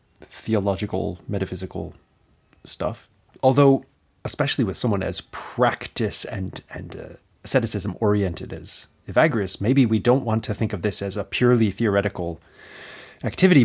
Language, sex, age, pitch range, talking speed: English, male, 30-49, 100-115 Hz, 125 wpm